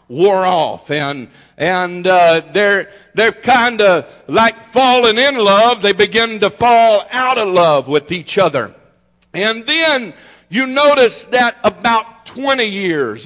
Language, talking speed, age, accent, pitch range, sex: English, 140 wpm, 50-69, American, 175-235 Hz, male